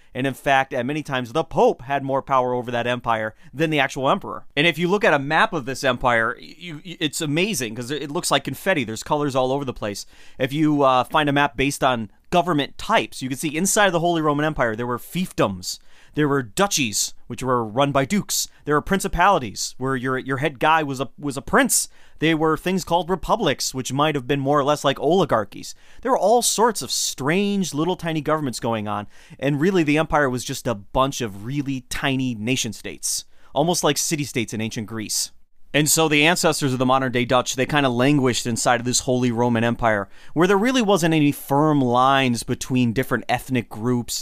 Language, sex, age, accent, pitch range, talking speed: English, male, 30-49, American, 125-160 Hz, 215 wpm